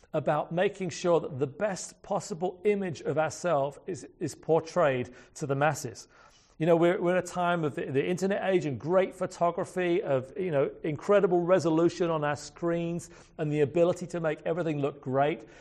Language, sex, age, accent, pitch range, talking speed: English, male, 40-59, British, 145-175 Hz, 180 wpm